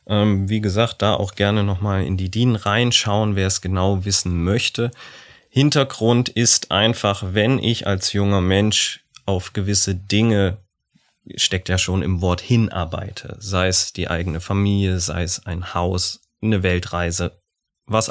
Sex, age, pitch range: male, 30-49, 95-115 Hz